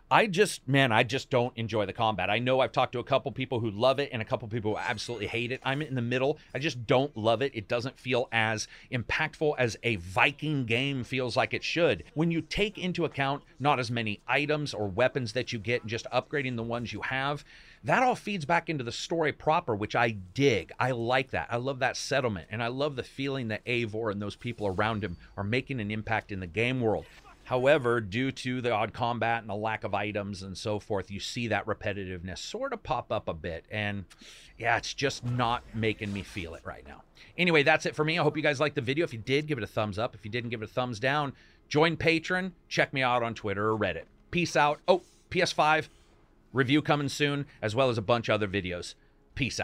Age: 40-59